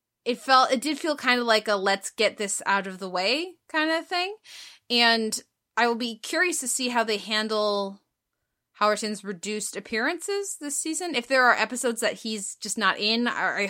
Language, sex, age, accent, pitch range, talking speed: English, female, 30-49, American, 195-255 Hz, 195 wpm